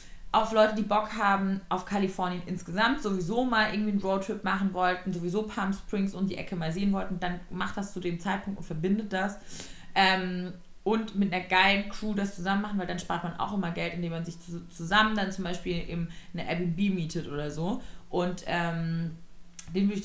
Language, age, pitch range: German, 20-39, 165-195 Hz